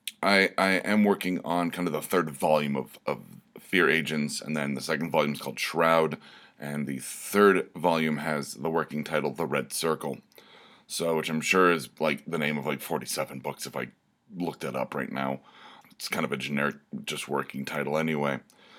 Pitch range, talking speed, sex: 75-90 Hz, 200 wpm, male